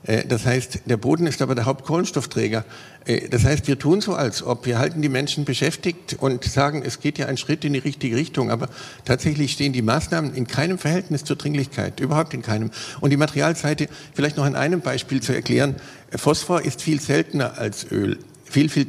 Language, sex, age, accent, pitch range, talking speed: German, male, 50-69, German, 130-150 Hz, 195 wpm